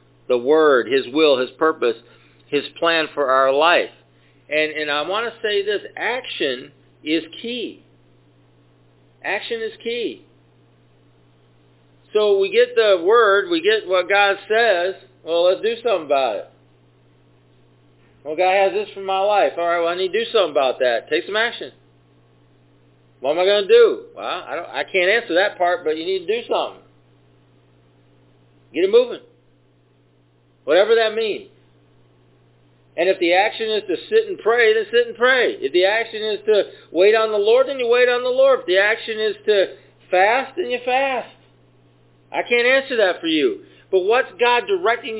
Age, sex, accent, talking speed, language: 50-69, male, American, 175 wpm, English